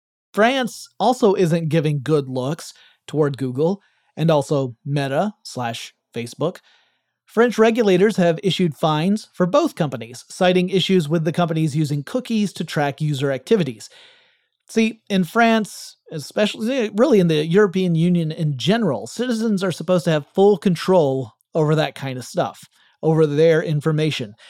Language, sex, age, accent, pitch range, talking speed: English, male, 30-49, American, 150-200 Hz, 140 wpm